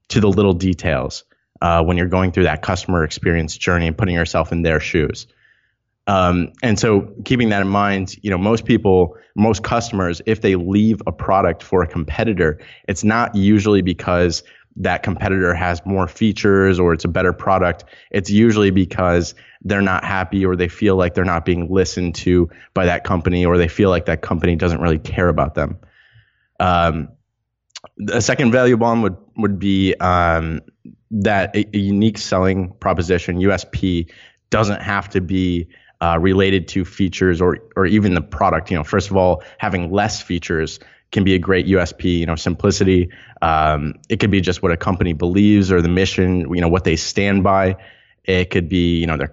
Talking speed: 185 wpm